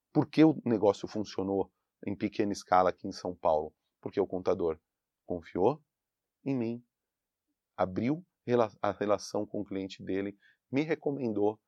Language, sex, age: Portuguese, male, 40-59